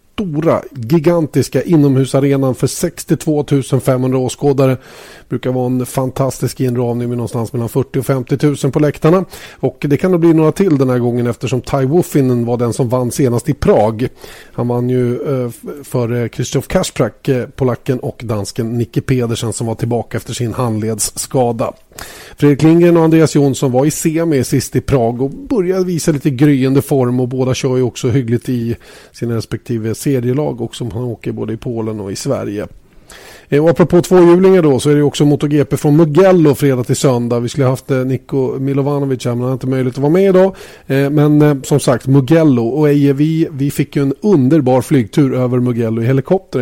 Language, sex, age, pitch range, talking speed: Swedish, male, 30-49, 120-145 Hz, 190 wpm